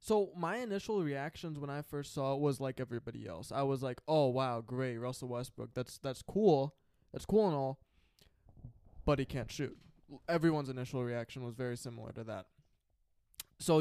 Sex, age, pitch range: male, 20-39, 120-160 Hz